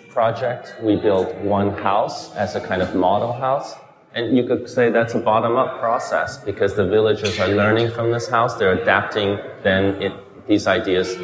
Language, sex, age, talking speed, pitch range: English, male, 30-49, 175 wpm, 90-140 Hz